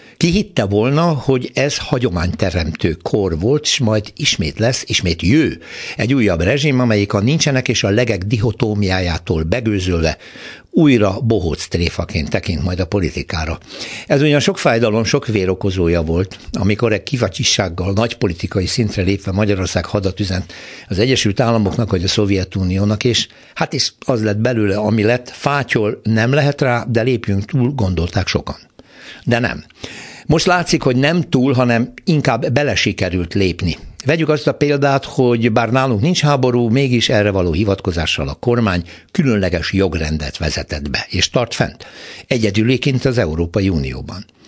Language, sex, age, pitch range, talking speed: Hungarian, male, 60-79, 95-130 Hz, 145 wpm